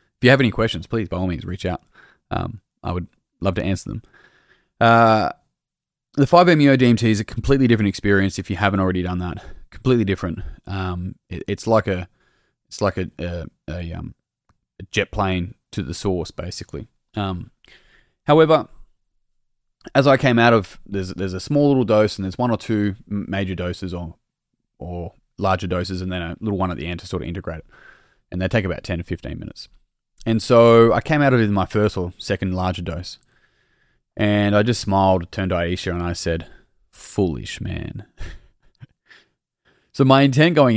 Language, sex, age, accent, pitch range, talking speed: English, male, 20-39, Australian, 90-115 Hz, 190 wpm